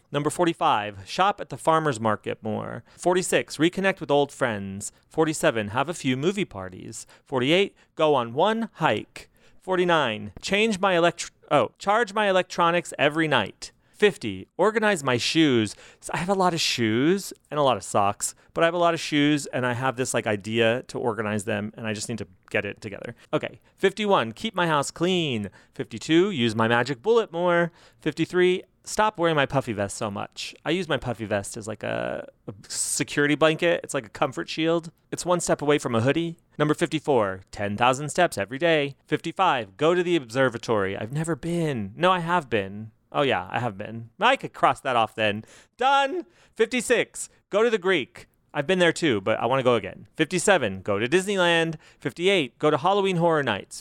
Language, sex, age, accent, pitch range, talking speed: English, male, 30-49, American, 115-175 Hz, 190 wpm